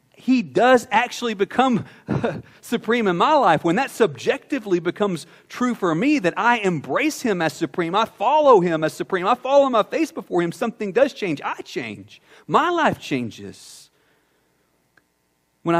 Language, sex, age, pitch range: English, male, 40-59, 120-175 Hz